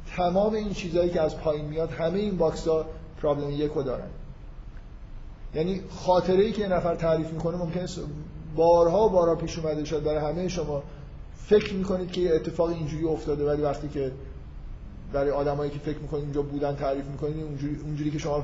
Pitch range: 150-185 Hz